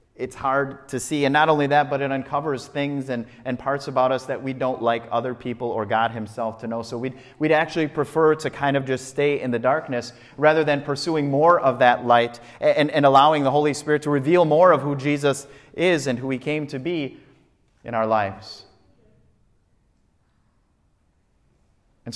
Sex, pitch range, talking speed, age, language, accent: male, 110-140 Hz, 190 wpm, 30-49, English, American